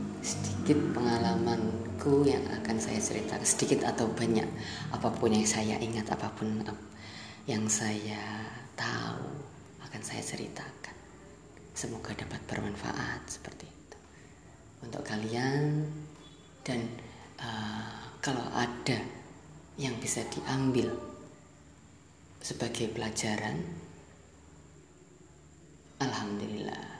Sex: female